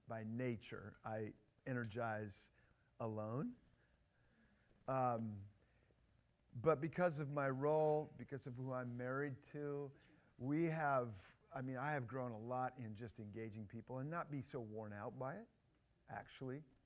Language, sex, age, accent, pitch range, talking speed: English, male, 40-59, American, 105-135 Hz, 140 wpm